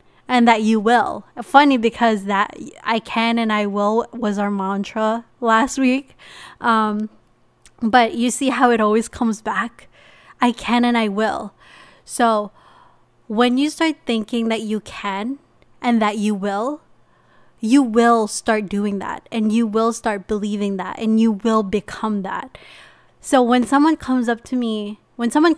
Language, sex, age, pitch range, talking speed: English, female, 20-39, 215-250 Hz, 160 wpm